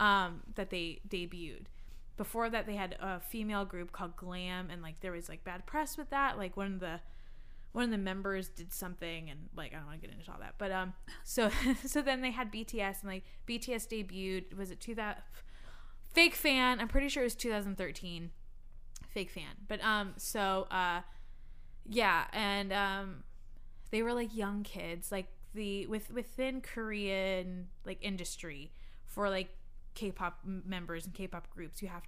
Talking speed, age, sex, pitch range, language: 180 wpm, 20-39, female, 175-225 Hz, English